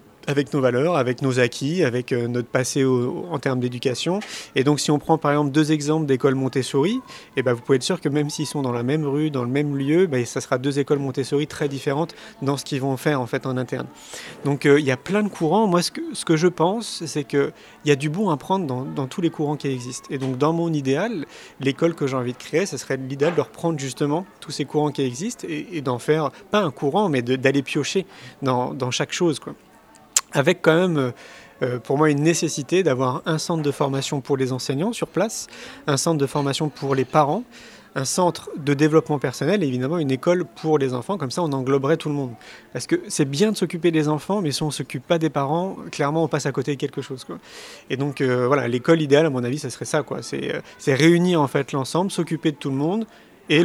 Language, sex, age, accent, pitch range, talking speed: French, male, 30-49, French, 135-160 Hz, 250 wpm